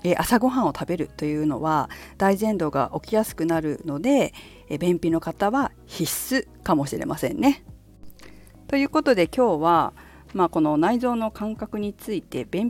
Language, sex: Japanese, female